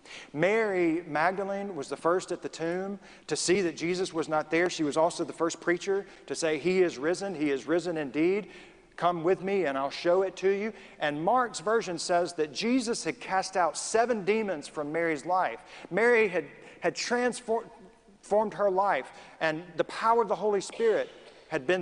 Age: 40-59